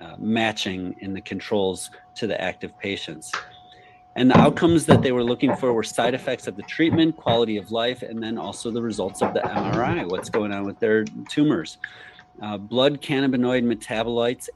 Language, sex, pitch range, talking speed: English, male, 100-125 Hz, 180 wpm